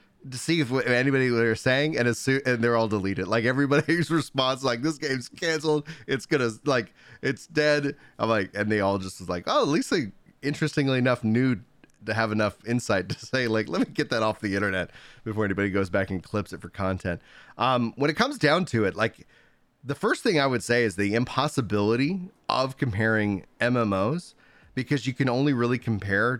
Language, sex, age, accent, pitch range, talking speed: English, male, 30-49, American, 100-135 Hz, 200 wpm